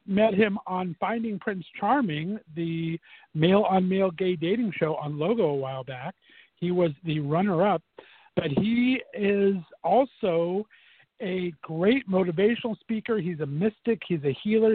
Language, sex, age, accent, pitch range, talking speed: English, male, 50-69, American, 165-215 Hz, 140 wpm